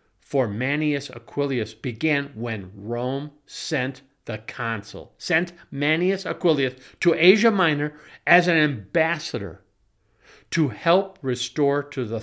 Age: 50-69